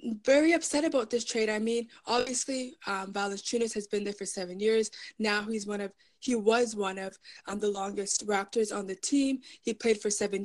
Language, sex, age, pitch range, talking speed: English, female, 20-39, 220-260 Hz, 200 wpm